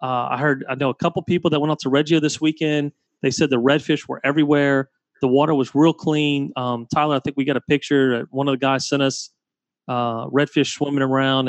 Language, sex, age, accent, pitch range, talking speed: English, male, 30-49, American, 135-175 Hz, 235 wpm